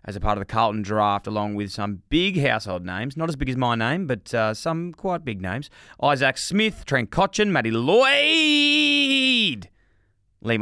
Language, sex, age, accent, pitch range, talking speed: English, male, 20-39, Australian, 100-150 Hz, 180 wpm